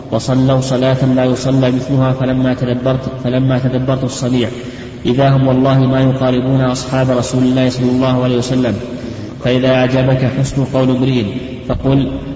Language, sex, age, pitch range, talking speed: Arabic, male, 20-39, 125-130 Hz, 135 wpm